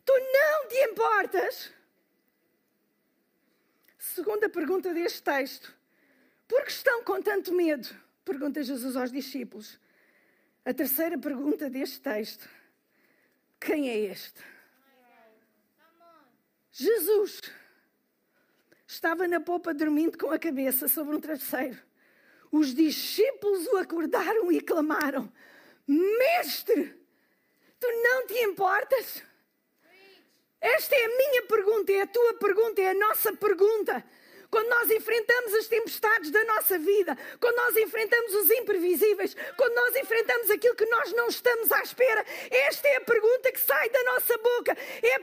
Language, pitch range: Portuguese, 300-455 Hz